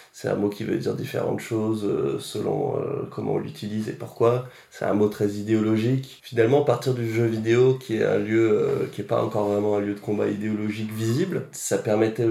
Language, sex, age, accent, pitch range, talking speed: French, male, 20-39, French, 105-125 Hz, 195 wpm